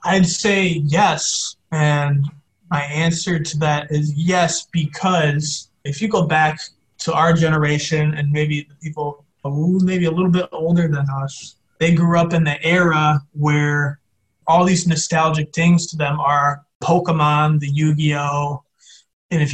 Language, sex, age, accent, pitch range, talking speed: English, male, 20-39, American, 145-170 Hz, 150 wpm